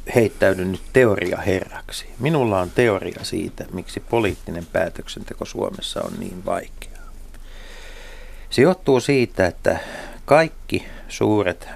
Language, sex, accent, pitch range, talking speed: Finnish, male, native, 80-105 Hz, 100 wpm